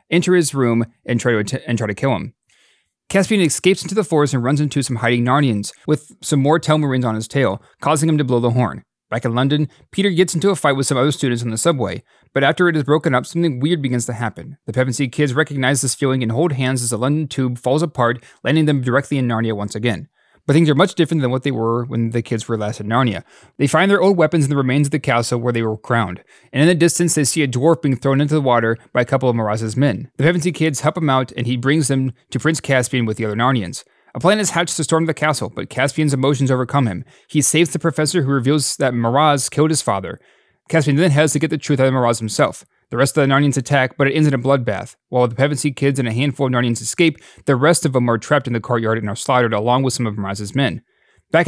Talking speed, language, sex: 265 wpm, English, male